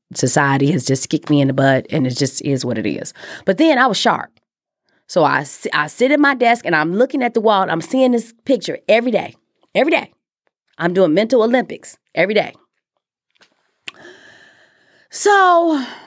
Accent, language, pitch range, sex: American, English, 150-240 Hz, female